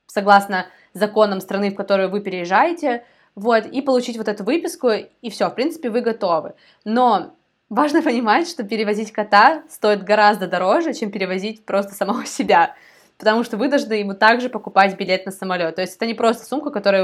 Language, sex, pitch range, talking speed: Ukrainian, female, 190-220 Hz, 175 wpm